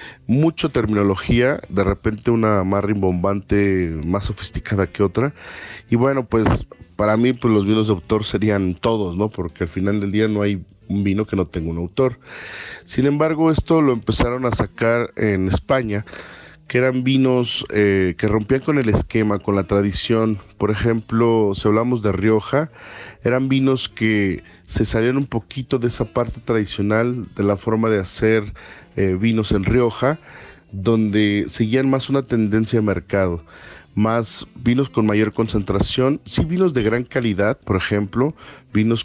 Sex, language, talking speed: male, Spanish, 160 wpm